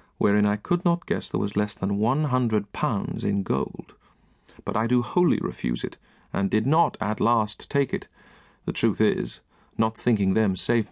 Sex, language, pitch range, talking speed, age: male, English, 105-150 Hz, 185 wpm, 40-59